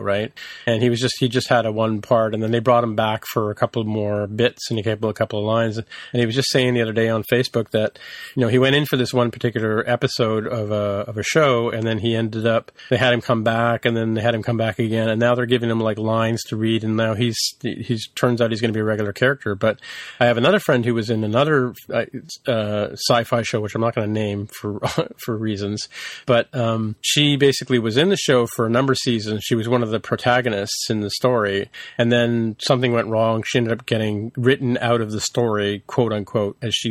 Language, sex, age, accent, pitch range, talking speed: English, male, 40-59, American, 110-120 Hz, 255 wpm